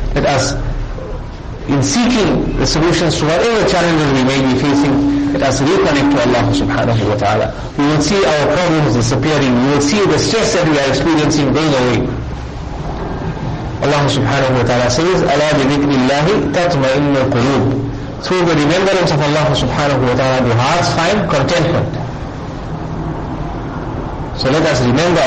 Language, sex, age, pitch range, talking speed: English, male, 50-69, 130-160 Hz, 150 wpm